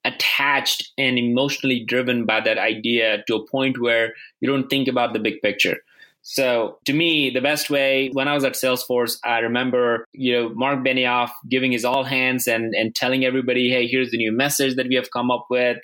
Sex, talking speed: male, 205 wpm